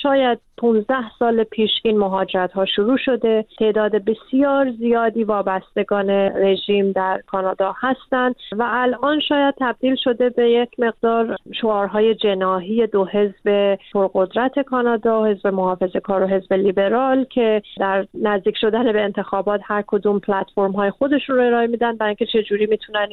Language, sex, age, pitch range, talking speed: Persian, female, 30-49, 205-245 Hz, 140 wpm